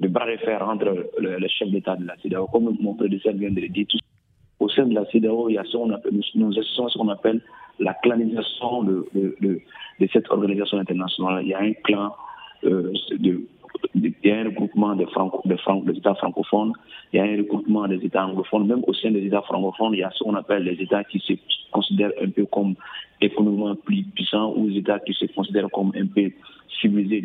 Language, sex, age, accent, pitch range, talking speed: French, male, 40-59, French, 100-120 Hz, 225 wpm